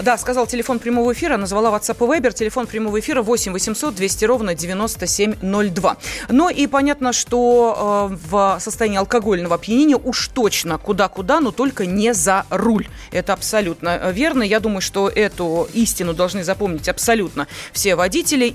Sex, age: female, 30-49